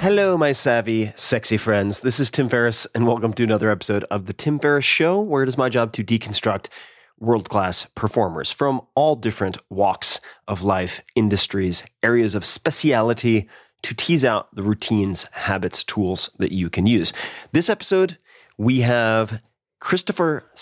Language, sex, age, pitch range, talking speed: English, male, 30-49, 100-120 Hz, 160 wpm